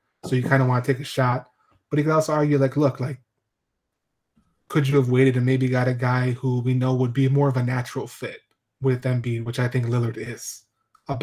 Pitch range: 125-145 Hz